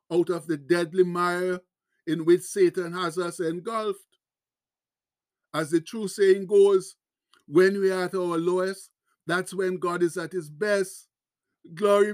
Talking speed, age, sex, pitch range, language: 150 wpm, 60-79, male, 165-190 Hz, English